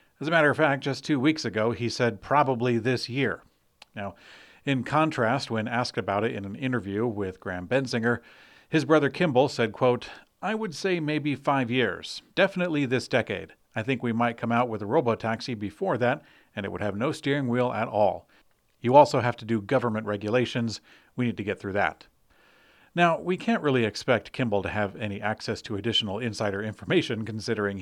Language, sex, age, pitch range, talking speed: English, male, 50-69, 105-140 Hz, 190 wpm